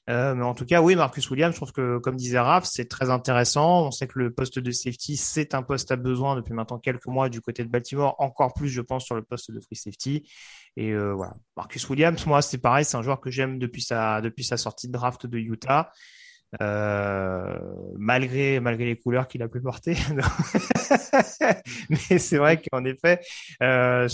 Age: 30-49